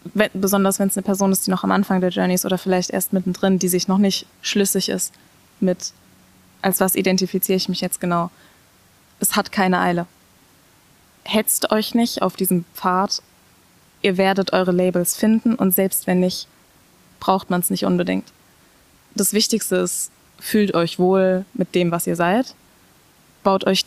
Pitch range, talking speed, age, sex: 180-195 Hz, 170 wpm, 20-39, female